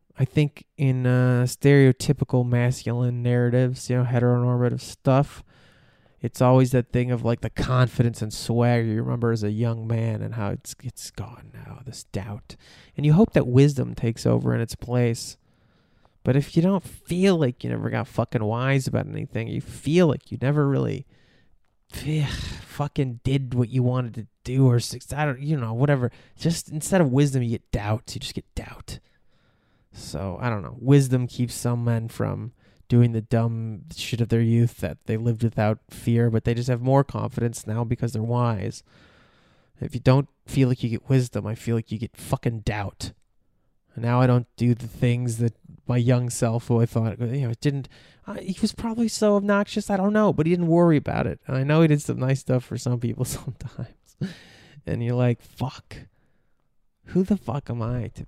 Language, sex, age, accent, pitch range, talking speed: English, male, 20-39, American, 115-135 Hz, 195 wpm